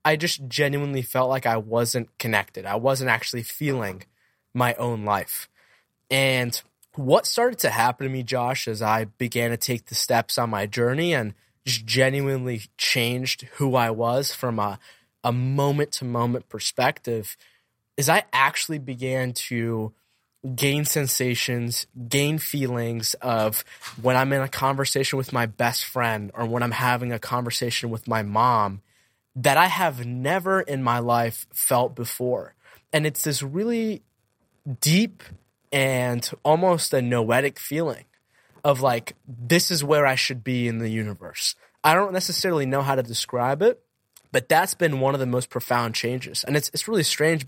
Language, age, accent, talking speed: English, 20-39, American, 160 wpm